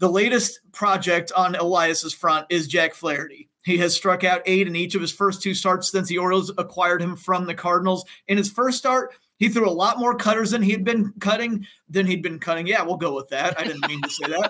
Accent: American